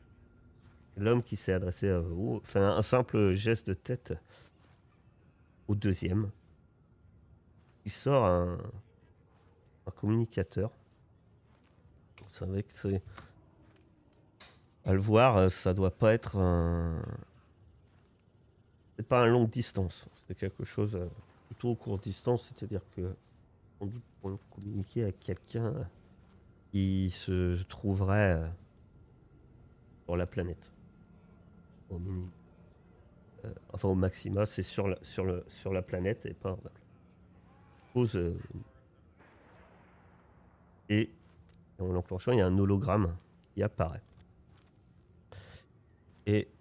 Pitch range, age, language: 90-110 Hz, 40-59, French